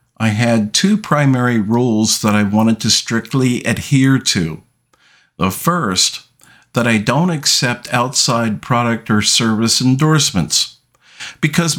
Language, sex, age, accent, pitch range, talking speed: English, male, 50-69, American, 105-140 Hz, 120 wpm